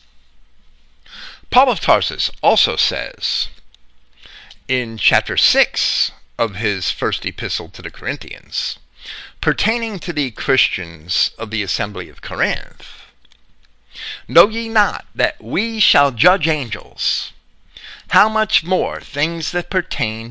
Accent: American